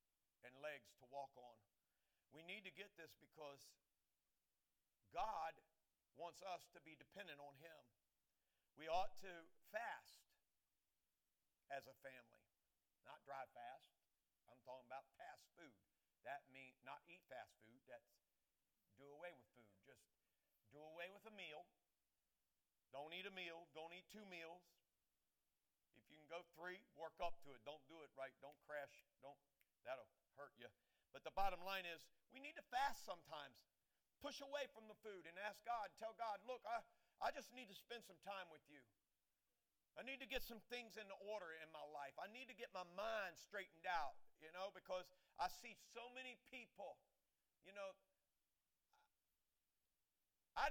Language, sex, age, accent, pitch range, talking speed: English, male, 50-69, American, 140-210 Hz, 165 wpm